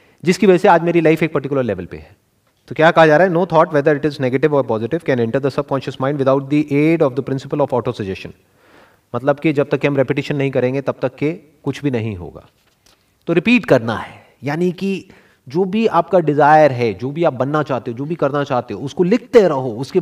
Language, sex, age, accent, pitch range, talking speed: Hindi, male, 30-49, native, 135-195 Hz, 220 wpm